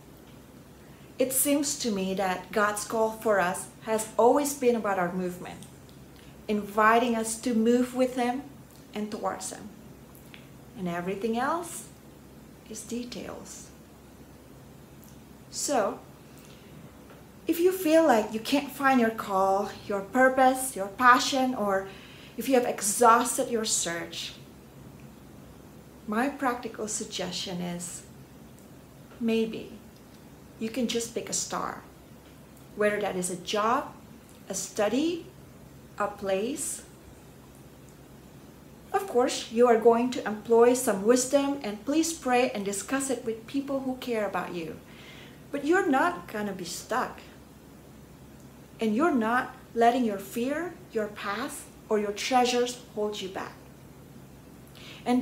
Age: 30-49